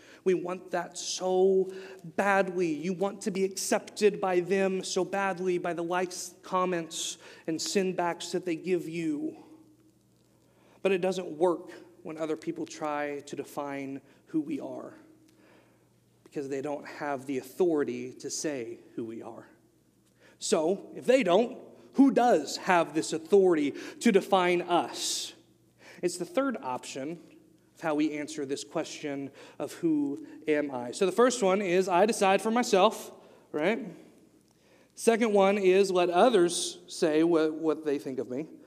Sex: male